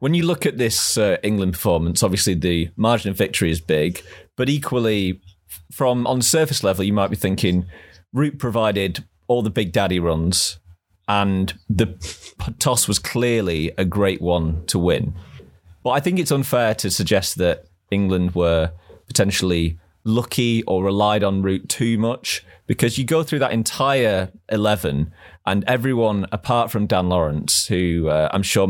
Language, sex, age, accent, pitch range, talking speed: English, male, 30-49, British, 90-115 Hz, 160 wpm